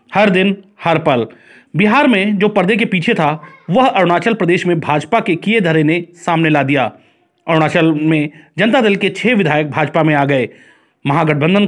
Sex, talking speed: male, 180 wpm